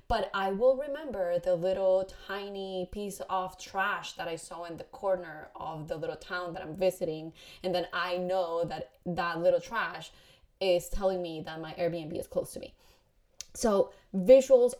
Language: English